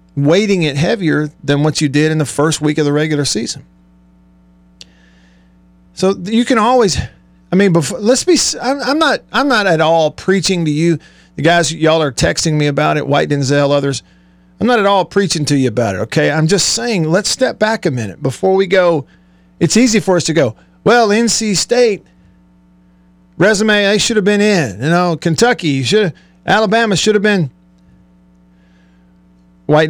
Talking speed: 180 wpm